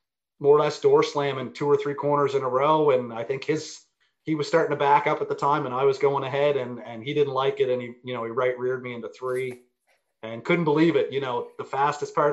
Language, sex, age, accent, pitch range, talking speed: English, male, 30-49, American, 130-180 Hz, 270 wpm